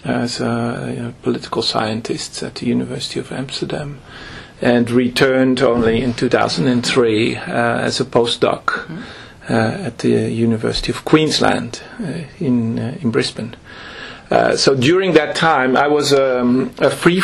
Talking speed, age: 145 wpm, 40-59